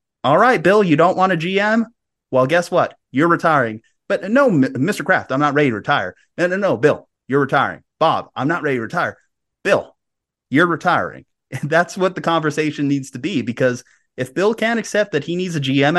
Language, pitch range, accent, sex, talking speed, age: English, 135-195 Hz, American, male, 205 wpm, 30-49